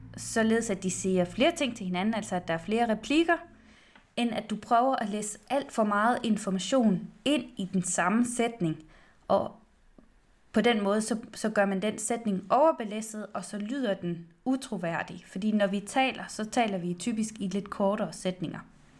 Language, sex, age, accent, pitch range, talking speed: Danish, female, 20-39, native, 190-245 Hz, 180 wpm